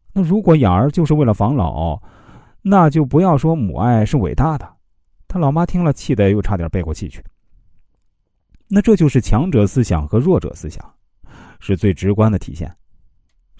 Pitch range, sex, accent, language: 90-140 Hz, male, native, Chinese